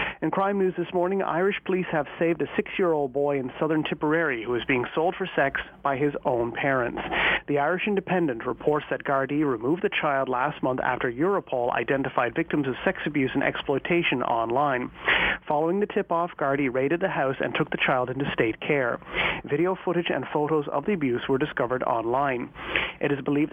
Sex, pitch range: male, 140-175 Hz